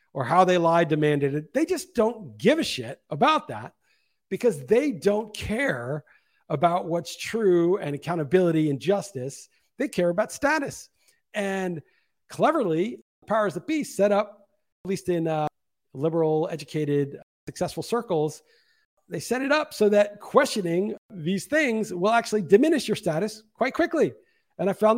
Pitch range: 170-230 Hz